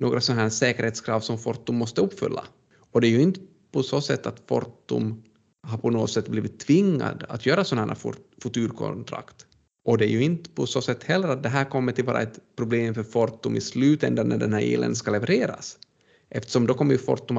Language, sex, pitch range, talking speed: Swedish, male, 115-145 Hz, 210 wpm